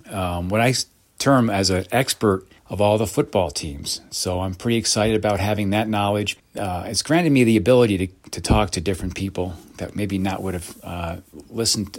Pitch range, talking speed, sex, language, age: 95-110 Hz, 195 wpm, male, English, 40-59